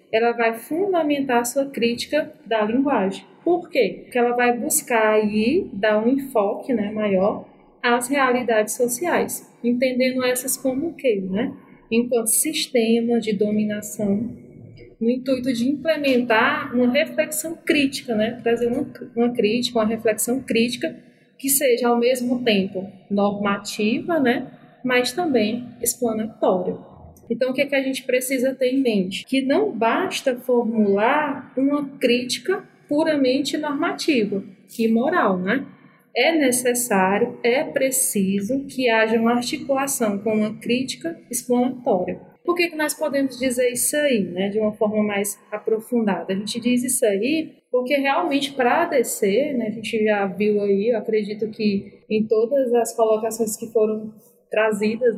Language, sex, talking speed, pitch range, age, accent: Portuguese, female, 140 wpm, 220-265 Hz, 20-39, Brazilian